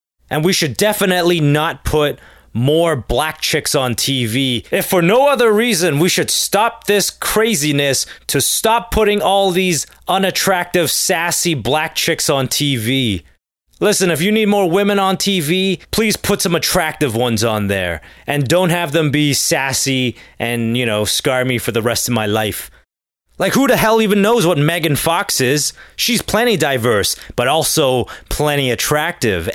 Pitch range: 125-185 Hz